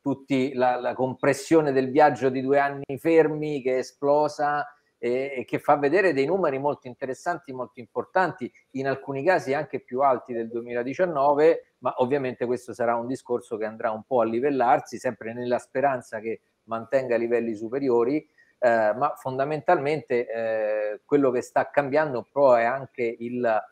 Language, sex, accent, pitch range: Italian, male, native, 120-145 Hz